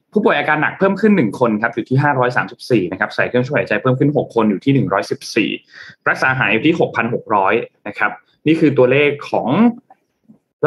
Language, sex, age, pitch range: Thai, male, 20-39, 120-150 Hz